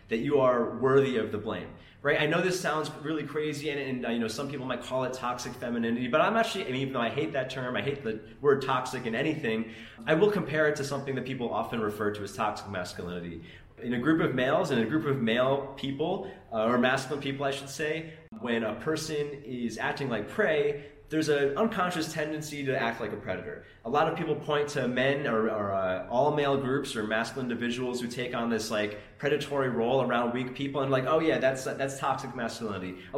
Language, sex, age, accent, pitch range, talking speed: English, male, 20-39, American, 115-150 Hz, 230 wpm